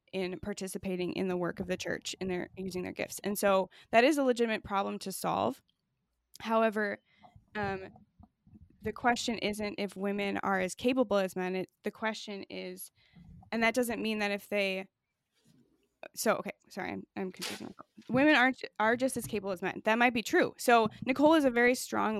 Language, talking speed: English, 185 wpm